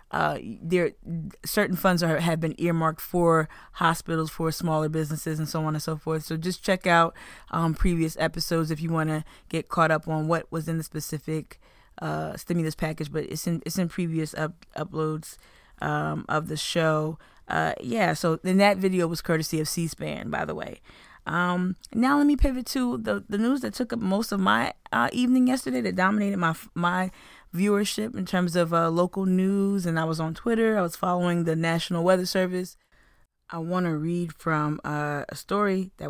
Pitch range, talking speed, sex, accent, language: 155-185 Hz, 195 wpm, female, American, English